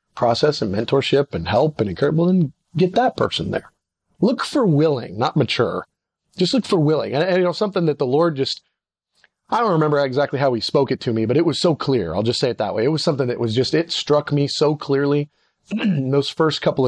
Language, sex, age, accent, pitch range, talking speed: English, male, 30-49, American, 130-170 Hz, 240 wpm